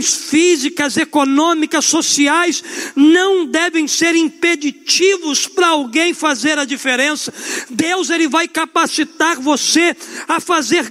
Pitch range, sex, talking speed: 280-340 Hz, male, 105 wpm